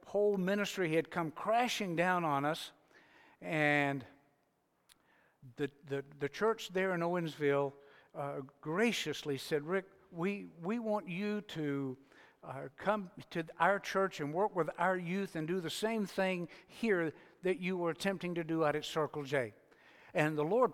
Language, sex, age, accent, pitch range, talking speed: English, male, 60-79, American, 155-205 Hz, 155 wpm